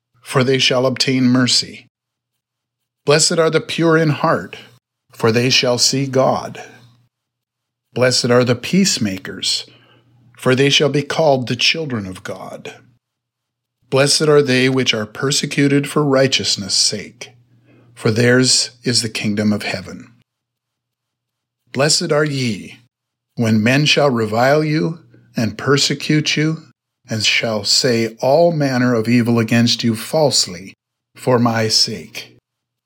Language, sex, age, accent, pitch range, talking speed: English, male, 50-69, American, 115-135 Hz, 125 wpm